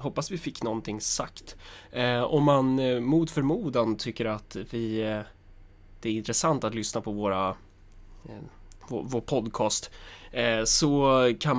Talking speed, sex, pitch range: 150 wpm, male, 105-135 Hz